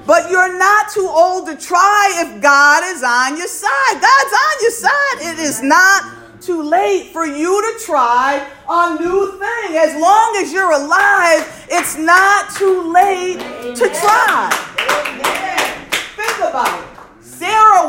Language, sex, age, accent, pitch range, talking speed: English, female, 40-59, American, 280-385 Hz, 150 wpm